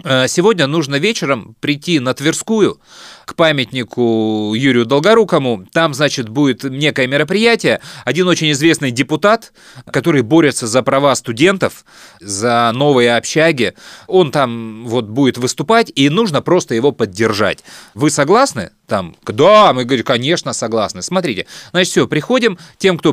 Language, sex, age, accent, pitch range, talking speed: Russian, male, 30-49, native, 130-185 Hz, 130 wpm